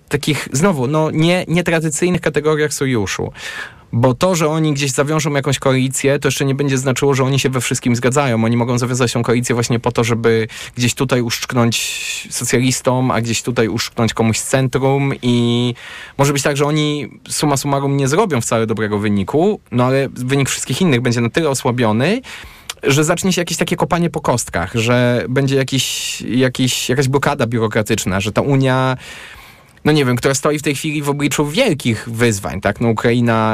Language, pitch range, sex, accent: Polish, 120-145 Hz, male, native